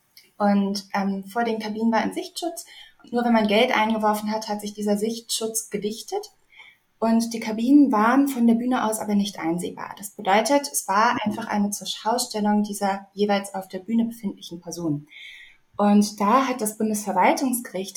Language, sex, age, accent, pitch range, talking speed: German, female, 20-39, German, 195-230 Hz, 165 wpm